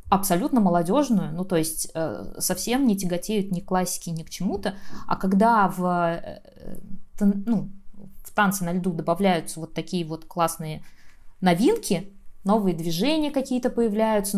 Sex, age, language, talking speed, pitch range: female, 20-39, Russian, 140 wpm, 175-210 Hz